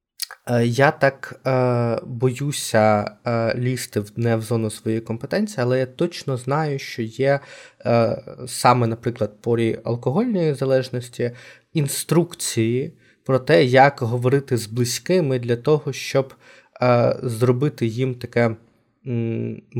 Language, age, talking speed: Ukrainian, 20-39, 115 wpm